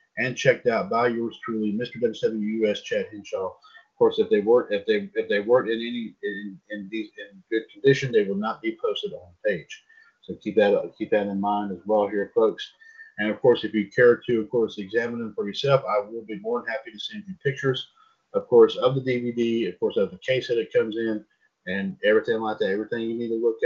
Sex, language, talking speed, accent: male, English, 240 wpm, American